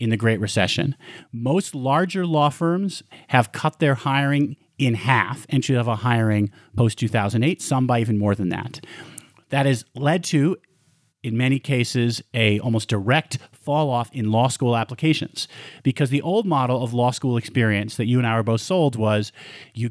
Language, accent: English, American